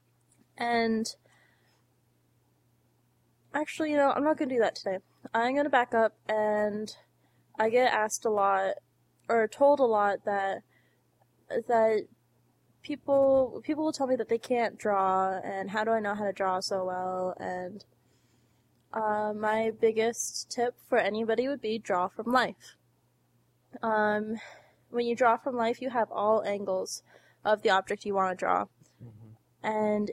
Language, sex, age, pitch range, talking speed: English, female, 10-29, 200-235 Hz, 155 wpm